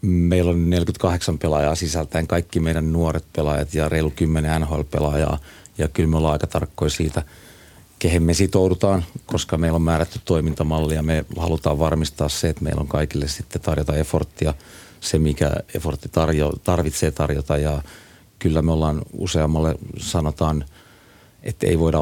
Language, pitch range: Finnish, 75-85 Hz